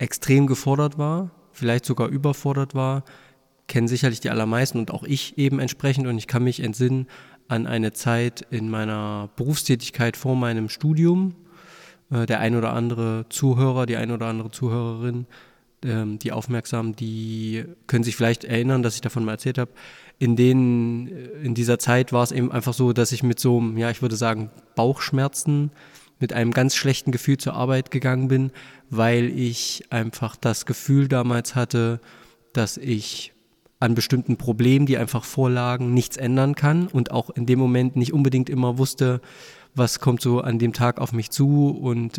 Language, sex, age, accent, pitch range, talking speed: German, male, 20-39, German, 115-135 Hz, 170 wpm